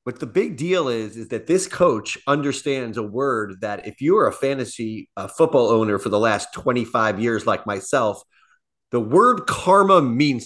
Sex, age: male, 30-49